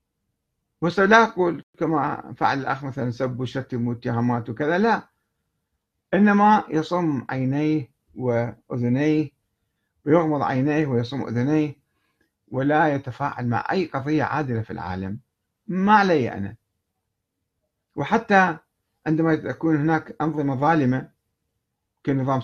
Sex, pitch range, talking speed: male, 120-170 Hz, 95 wpm